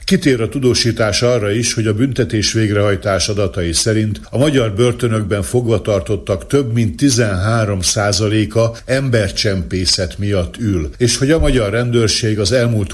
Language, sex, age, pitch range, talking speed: Hungarian, male, 60-79, 100-120 Hz, 135 wpm